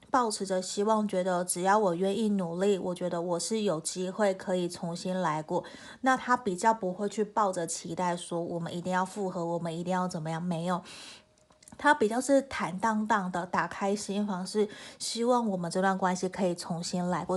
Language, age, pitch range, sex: Chinese, 30-49, 180-215 Hz, female